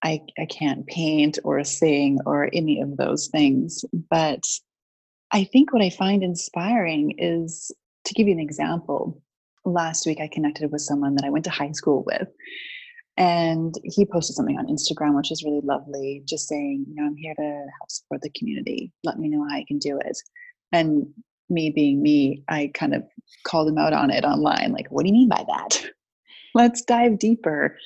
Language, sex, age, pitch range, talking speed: English, female, 30-49, 150-180 Hz, 190 wpm